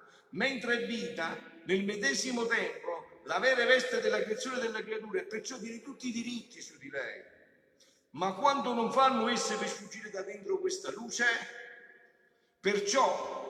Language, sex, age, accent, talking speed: Italian, male, 50-69, native, 145 wpm